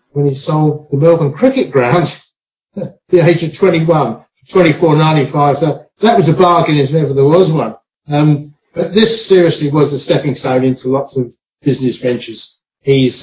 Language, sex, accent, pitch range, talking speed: English, male, British, 125-155 Hz, 165 wpm